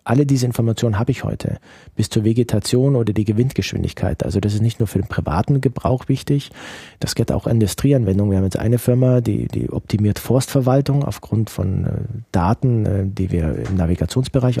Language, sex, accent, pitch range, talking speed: German, male, German, 100-130 Hz, 175 wpm